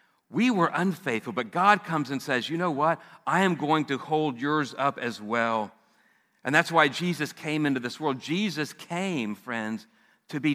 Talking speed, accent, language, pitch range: 190 wpm, American, English, 110-155 Hz